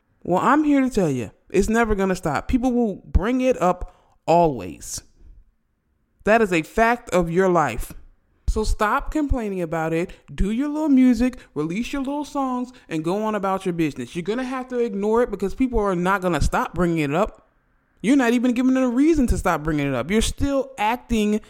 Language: English